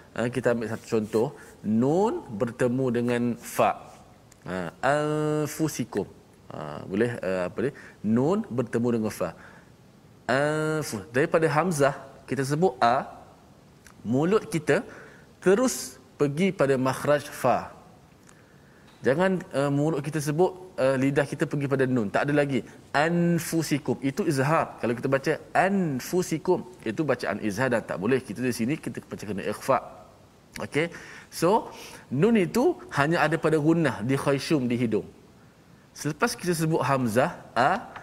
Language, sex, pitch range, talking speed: Malayalam, male, 130-165 Hz, 125 wpm